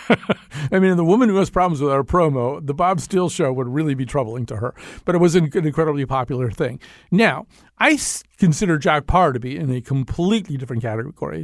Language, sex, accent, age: English, male, American, 40-59